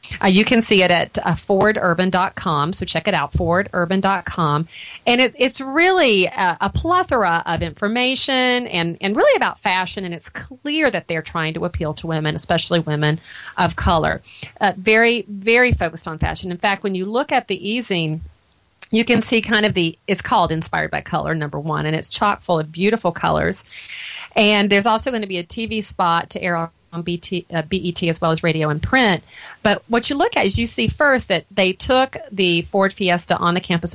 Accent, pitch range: American, 165-215 Hz